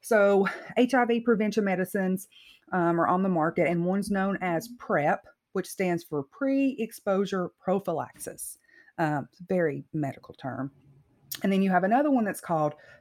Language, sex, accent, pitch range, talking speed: English, female, American, 165-220 Hz, 150 wpm